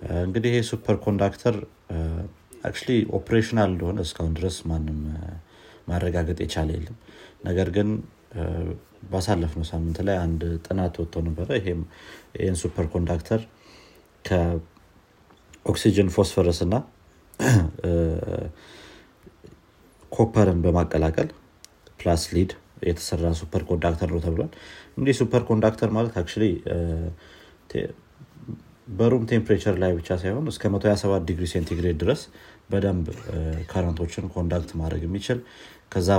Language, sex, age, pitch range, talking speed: Amharic, male, 50-69, 85-100 Hz, 95 wpm